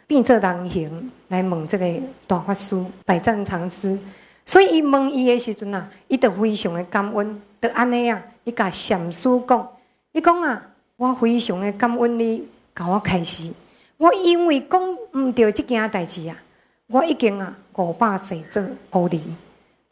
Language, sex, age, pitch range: Chinese, female, 50-69, 190-255 Hz